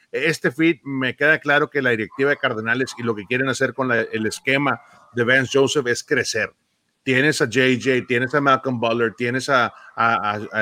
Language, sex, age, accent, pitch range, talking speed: Spanish, male, 40-59, Mexican, 120-140 Hz, 205 wpm